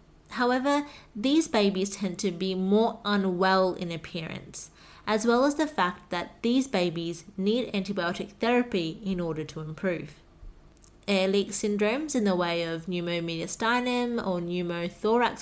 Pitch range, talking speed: 175-230 Hz, 135 wpm